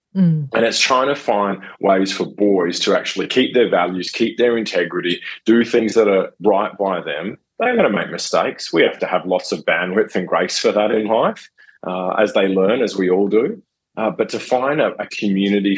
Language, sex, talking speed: English, male, 215 wpm